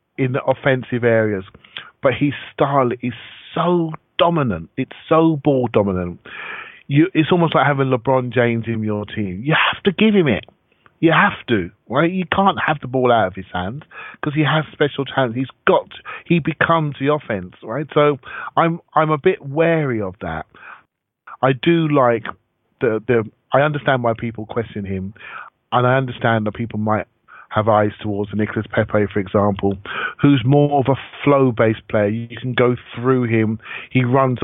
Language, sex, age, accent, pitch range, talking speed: English, male, 40-59, British, 105-135 Hz, 175 wpm